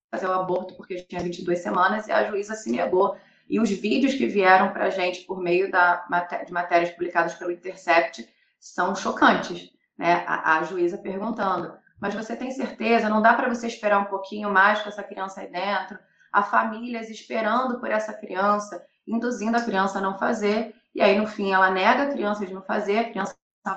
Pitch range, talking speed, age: 180-215 Hz, 195 wpm, 20-39